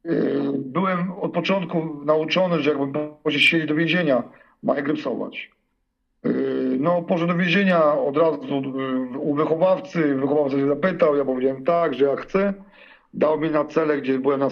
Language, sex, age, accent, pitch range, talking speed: Polish, male, 50-69, native, 140-190 Hz, 150 wpm